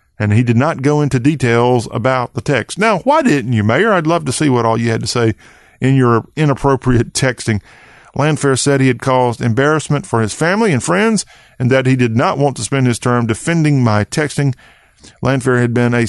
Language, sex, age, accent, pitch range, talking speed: English, male, 40-59, American, 115-140 Hz, 215 wpm